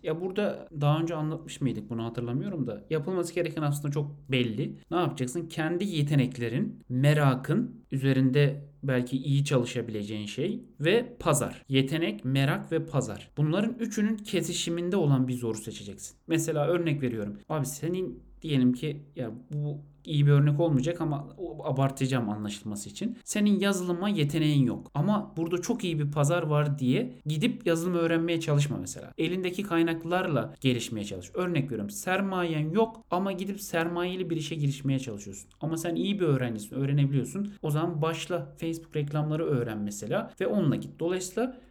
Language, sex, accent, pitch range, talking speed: Turkish, male, native, 130-175 Hz, 150 wpm